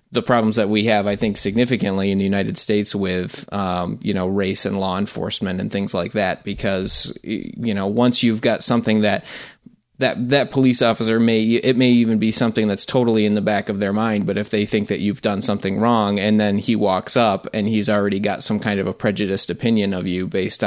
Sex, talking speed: male, 225 wpm